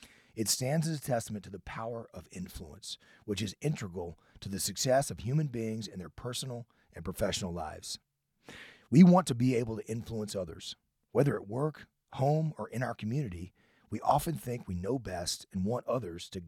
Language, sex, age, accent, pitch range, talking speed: English, male, 30-49, American, 95-130 Hz, 185 wpm